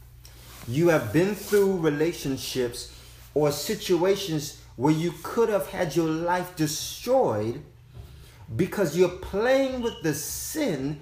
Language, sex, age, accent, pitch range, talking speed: English, male, 30-49, American, 120-190 Hz, 115 wpm